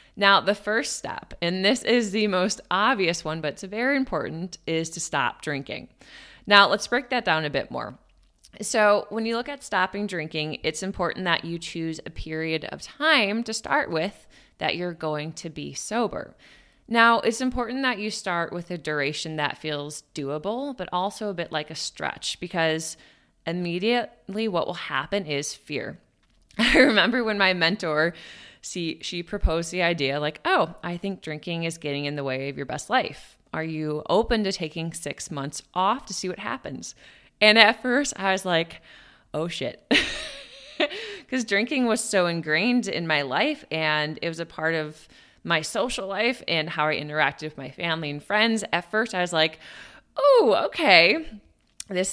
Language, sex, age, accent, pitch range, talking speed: English, female, 20-39, American, 155-215 Hz, 180 wpm